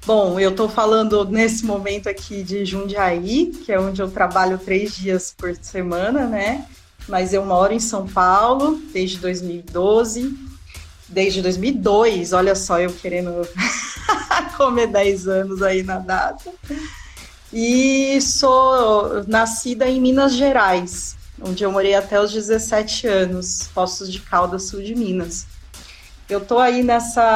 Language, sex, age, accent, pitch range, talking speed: Portuguese, female, 30-49, Brazilian, 185-235 Hz, 135 wpm